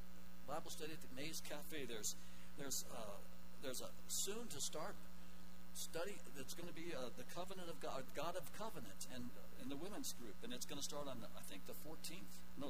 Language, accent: English, American